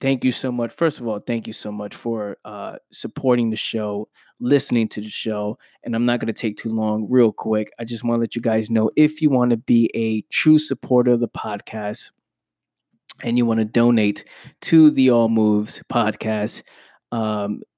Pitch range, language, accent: 110-125 Hz, English, American